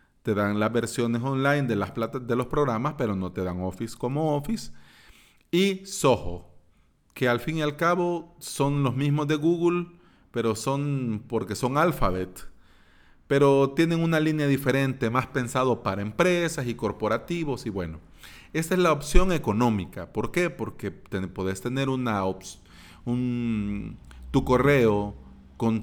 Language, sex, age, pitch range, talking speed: Spanish, male, 40-59, 100-145 Hz, 155 wpm